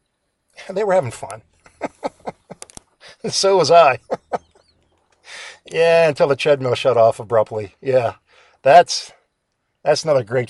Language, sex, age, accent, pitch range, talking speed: English, male, 50-69, American, 125-170 Hz, 125 wpm